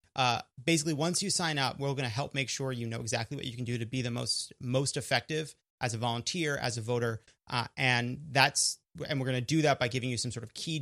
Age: 30-49